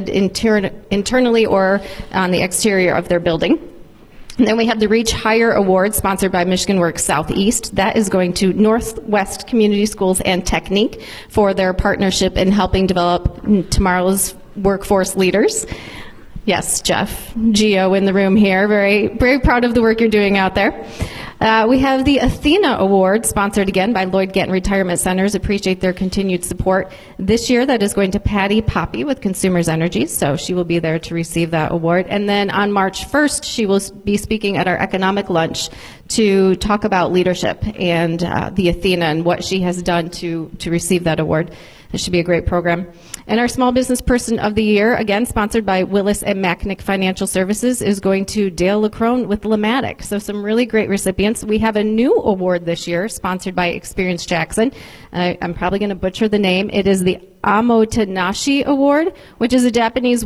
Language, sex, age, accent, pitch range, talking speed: English, female, 30-49, American, 185-215 Hz, 185 wpm